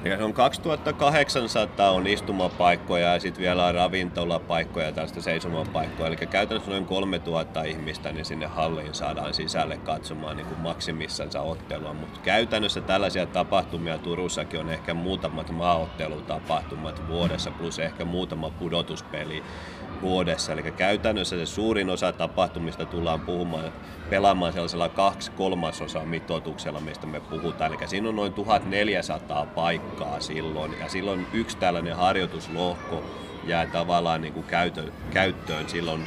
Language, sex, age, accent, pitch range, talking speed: Finnish, male, 30-49, native, 80-90 Hz, 125 wpm